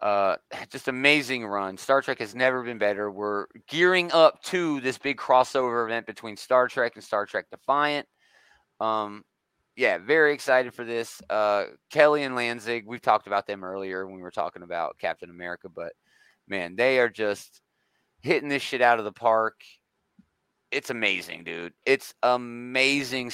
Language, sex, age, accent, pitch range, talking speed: English, male, 30-49, American, 100-130 Hz, 165 wpm